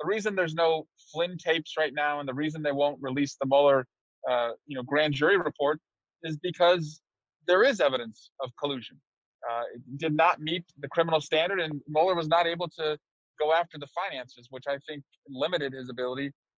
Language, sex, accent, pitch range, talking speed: English, male, American, 140-175 Hz, 190 wpm